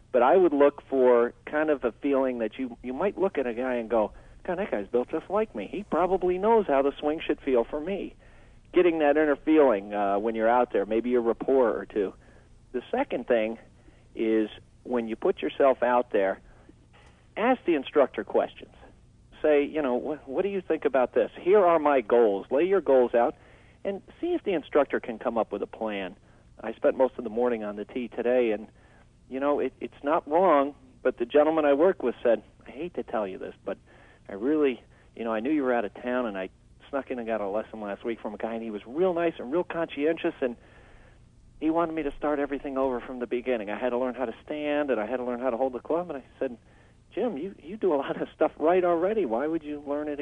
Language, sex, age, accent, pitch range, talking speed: English, male, 50-69, American, 115-155 Hz, 240 wpm